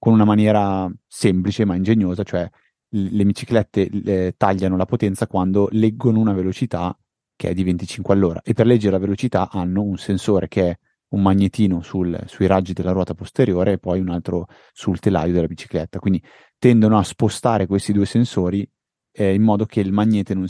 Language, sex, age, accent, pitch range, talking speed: Italian, male, 30-49, native, 90-105 Hz, 180 wpm